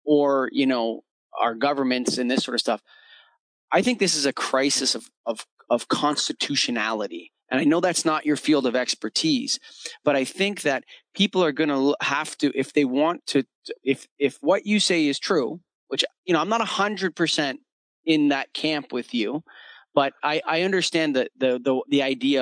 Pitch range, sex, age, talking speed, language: 140-190 Hz, male, 30-49, 185 wpm, English